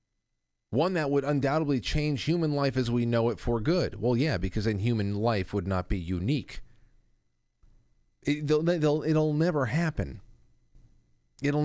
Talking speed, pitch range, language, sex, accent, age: 155 wpm, 100-145 Hz, English, male, American, 40-59